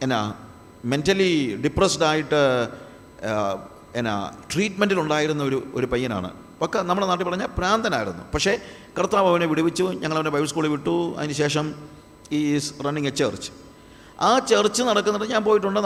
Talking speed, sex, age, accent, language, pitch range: 120 wpm, male, 50-69, native, Malayalam, 135-200 Hz